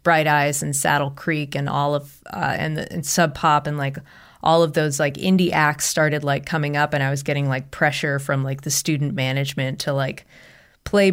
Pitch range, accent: 140-170 Hz, American